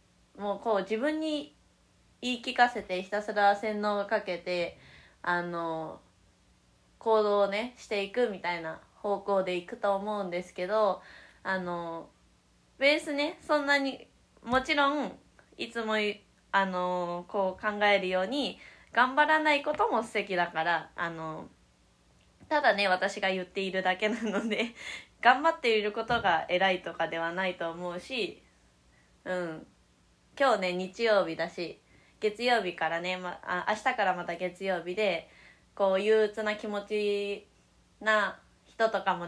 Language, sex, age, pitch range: Japanese, female, 20-39, 180-235 Hz